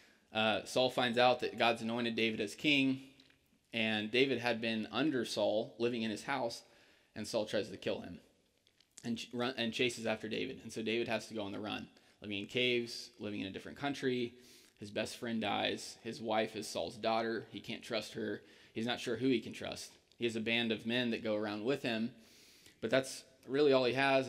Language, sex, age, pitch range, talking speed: English, male, 20-39, 110-130 Hz, 210 wpm